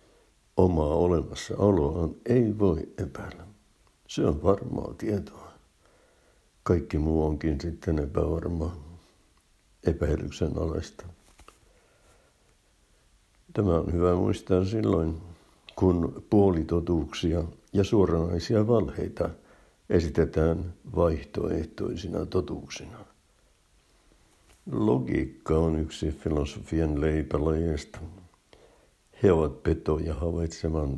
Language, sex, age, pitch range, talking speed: Finnish, male, 60-79, 75-90 Hz, 75 wpm